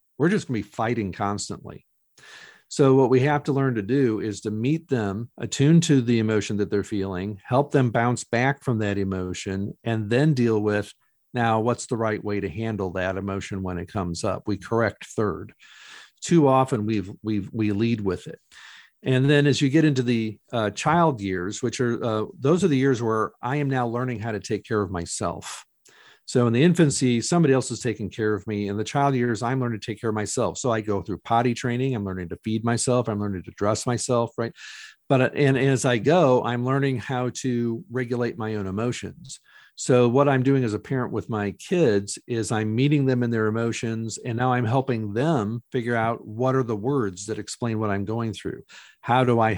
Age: 50-69